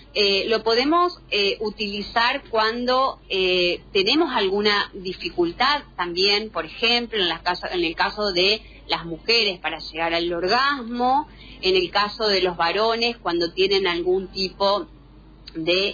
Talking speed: 140 wpm